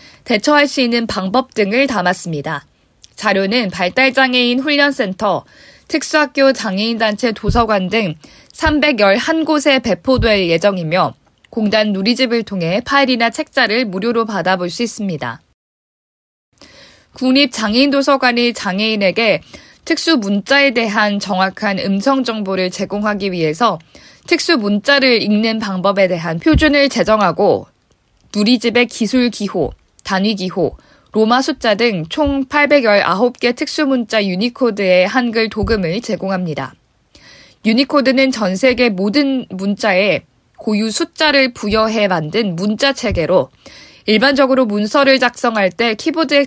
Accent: native